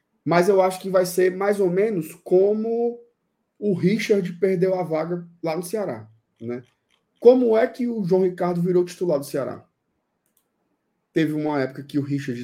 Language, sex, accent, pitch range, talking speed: Portuguese, male, Brazilian, 130-190 Hz, 170 wpm